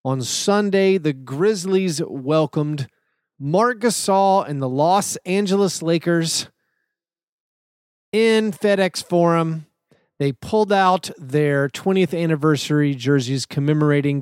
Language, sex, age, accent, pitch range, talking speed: English, male, 30-49, American, 135-180 Hz, 95 wpm